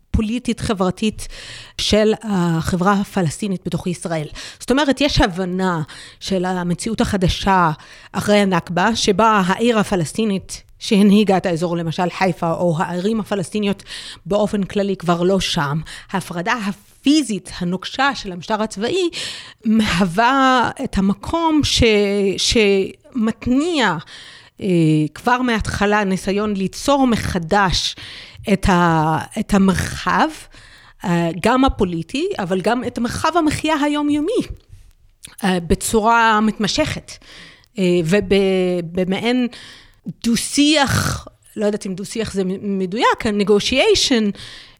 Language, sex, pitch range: Hebrew, female, 185-235 Hz